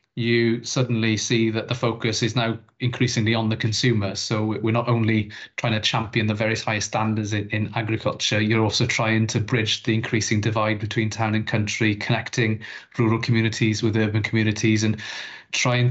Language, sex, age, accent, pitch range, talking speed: English, male, 30-49, British, 110-125 Hz, 175 wpm